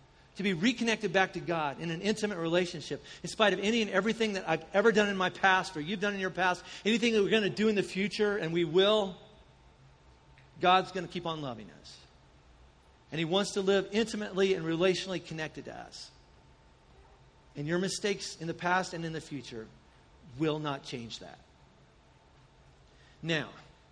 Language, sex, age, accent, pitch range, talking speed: English, male, 50-69, American, 170-230 Hz, 185 wpm